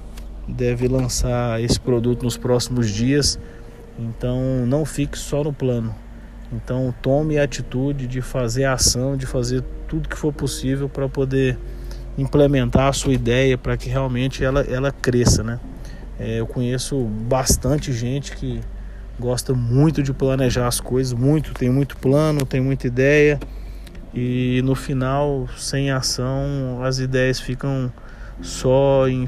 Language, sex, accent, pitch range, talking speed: Portuguese, male, Brazilian, 120-135 Hz, 140 wpm